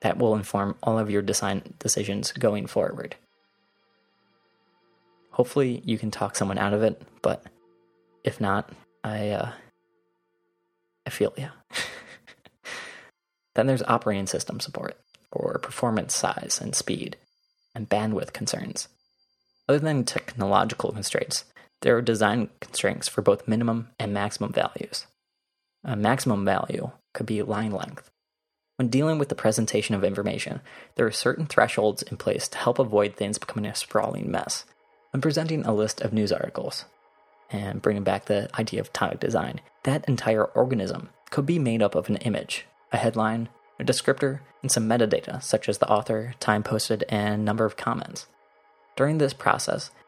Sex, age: male, 20-39